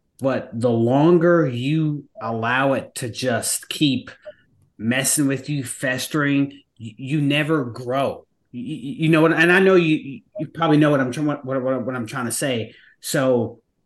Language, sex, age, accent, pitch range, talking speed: English, male, 30-49, American, 125-155 Hz, 160 wpm